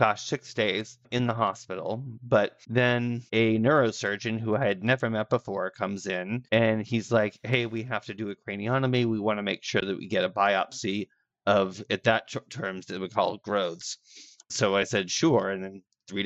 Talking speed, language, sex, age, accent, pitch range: 200 wpm, English, male, 30-49, American, 100-120 Hz